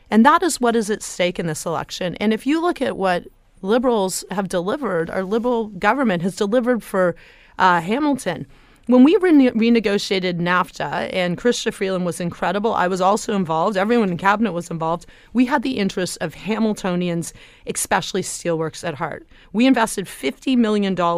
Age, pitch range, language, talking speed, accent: 30-49, 180-235 Hz, English, 165 wpm, American